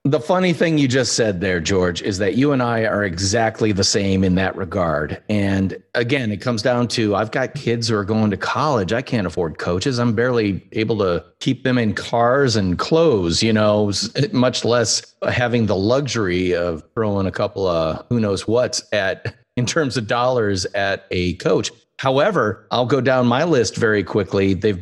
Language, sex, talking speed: English, male, 195 wpm